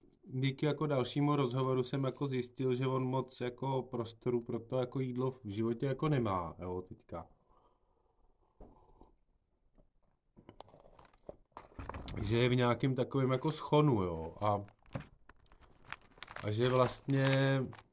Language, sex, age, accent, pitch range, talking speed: Czech, male, 40-59, native, 95-125 Hz, 115 wpm